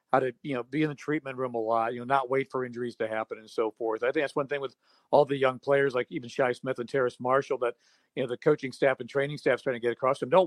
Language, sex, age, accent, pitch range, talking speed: English, male, 50-69, American, 125-140 Hz, 310 wpm